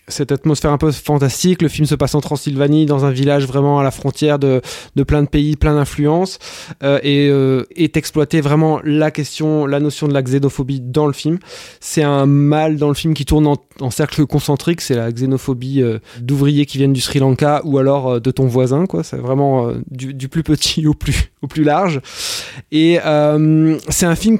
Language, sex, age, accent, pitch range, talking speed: French, male, 20-39, French, 140-165 Hz, 215 wpm